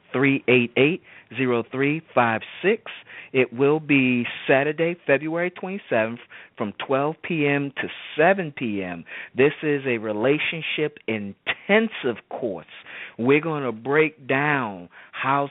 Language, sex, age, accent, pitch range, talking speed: English, male, 40-59, American, 115-150 Hz, 95 wpm